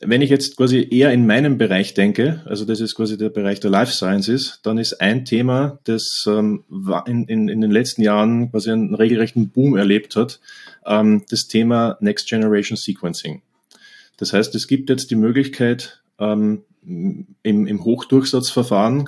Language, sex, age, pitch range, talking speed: German, male, 30-49, 110-130 Hz, 155 wpm